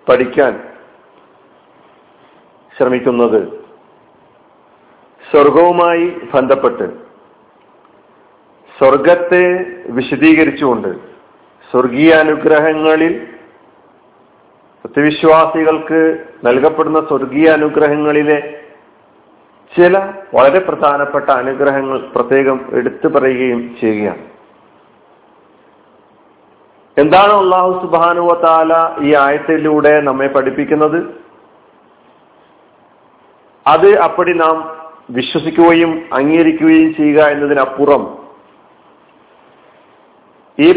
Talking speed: 50 wpm